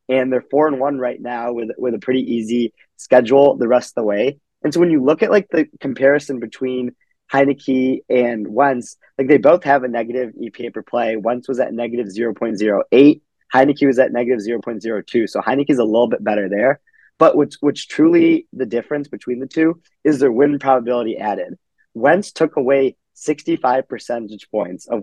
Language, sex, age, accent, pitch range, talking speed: English, male, 20-39, American, 120-145 Hz, 190 wpm